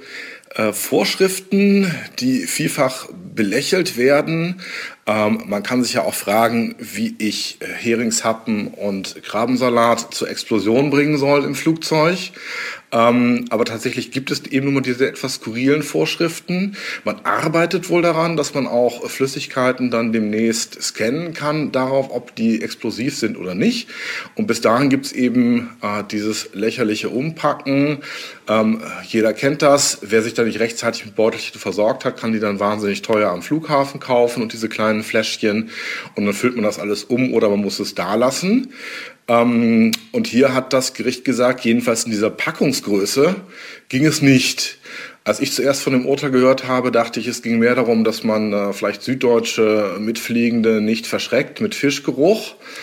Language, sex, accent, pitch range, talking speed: German, male, German, 110-140 Hz, 155 wpm